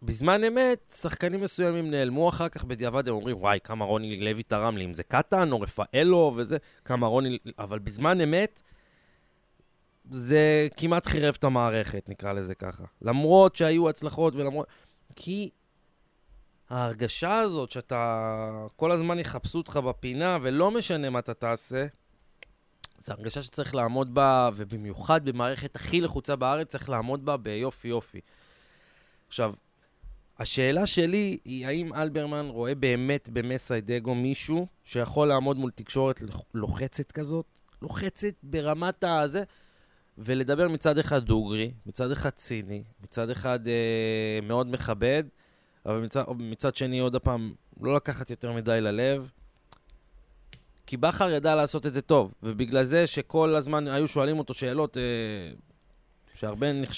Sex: male